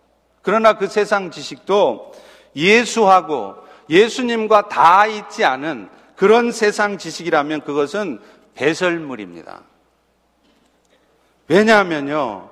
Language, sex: Korean, male